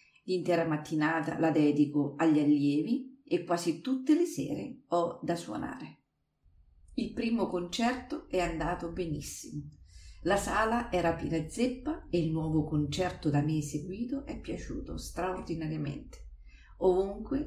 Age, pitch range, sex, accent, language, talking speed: 40-59, 150-215 Hz, female, native, Italian, 125 wpm